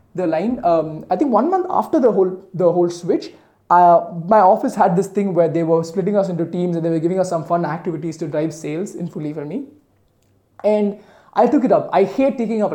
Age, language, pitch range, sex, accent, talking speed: 20-39, Tamil, 175-245 Hz, male, native, 230 wpm